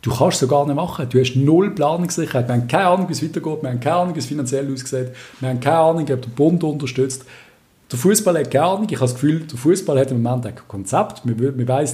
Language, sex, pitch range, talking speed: German, male, 125-165 Hz, 255 wpm